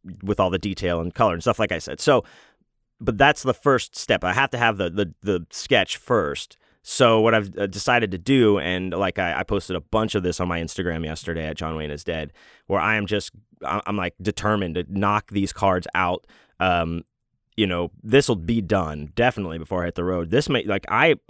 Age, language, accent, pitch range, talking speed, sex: 30-49, English, American, 90-110 Hz, 225 wpm, male